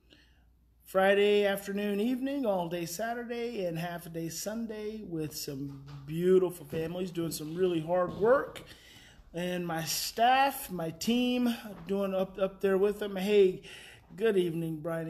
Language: English